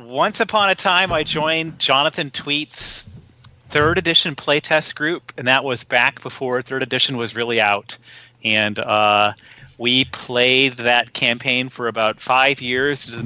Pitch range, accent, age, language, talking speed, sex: 130-170 Hz, American, 40-59, English, 155 wpm, male